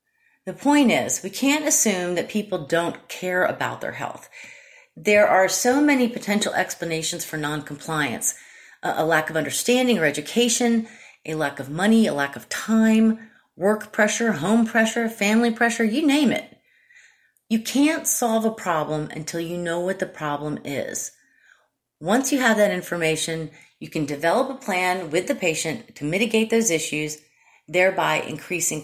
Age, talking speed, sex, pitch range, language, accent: 30-49, 155 wpm, female, 165-235 Hz, English, American